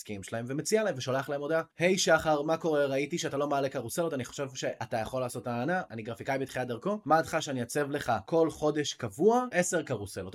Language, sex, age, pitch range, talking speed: Hebrew, male, 20-39, 115-155 Hz, 215 wpm